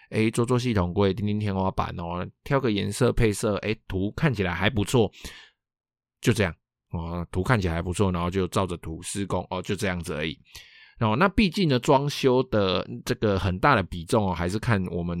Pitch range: 90-120 Hz